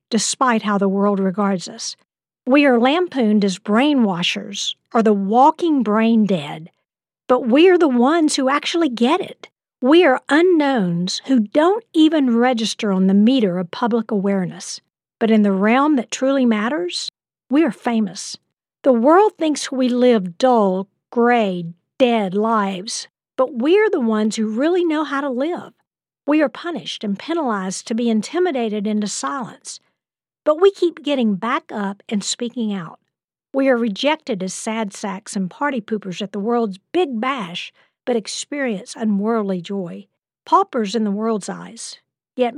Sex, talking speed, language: female, 155 wpm, English